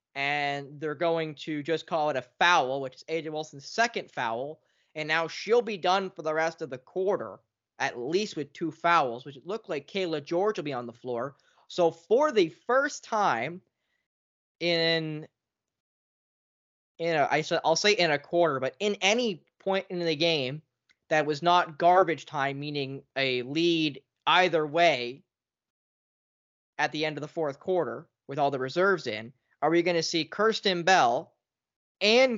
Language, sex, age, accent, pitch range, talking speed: English, male, 20-39, American, 140-175 Hz, 165 wpm